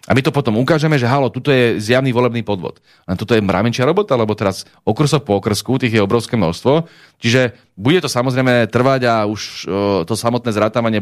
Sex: male